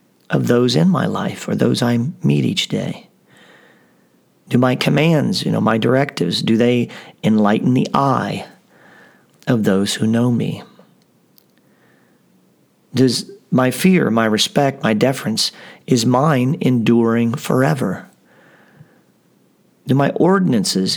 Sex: male